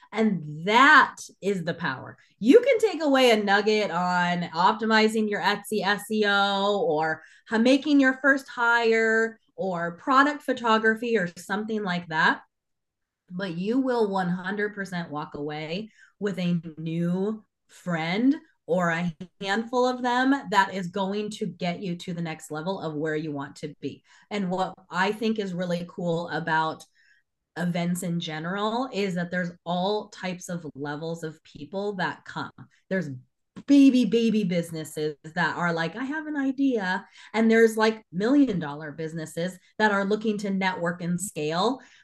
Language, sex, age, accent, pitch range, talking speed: English, female, 20-39, American, 175-220 Hz, 150 wpm